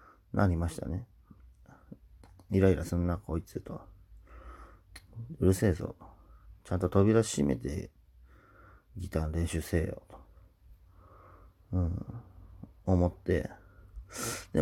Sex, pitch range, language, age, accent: male, 85-100 Hz, Japanese, 40-59, native